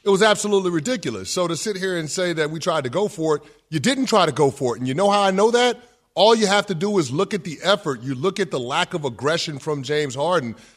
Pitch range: 130-180 Hz